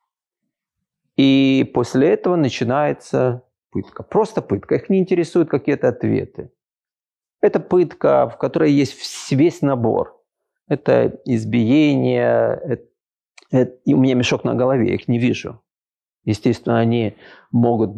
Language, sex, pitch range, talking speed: Ukrainian, male, 120-155 Hz, 110 wpm